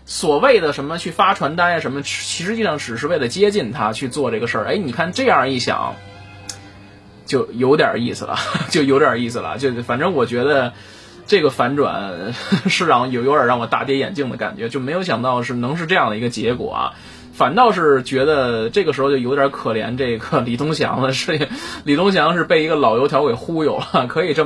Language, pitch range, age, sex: Chinese, 115-150 Hz, 20-39, male